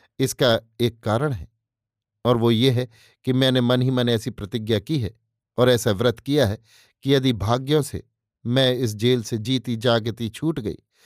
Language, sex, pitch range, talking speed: Hindi, male, 115-135 Hz, 185 wpm